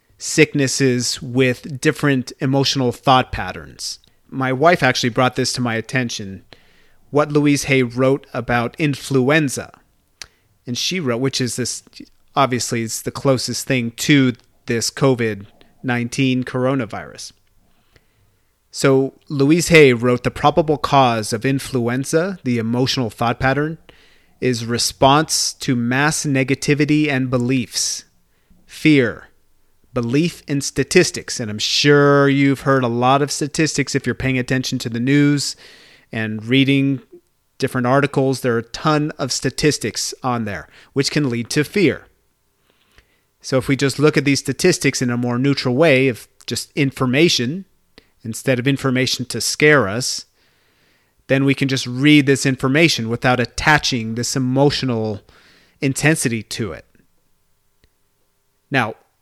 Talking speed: 130 wpm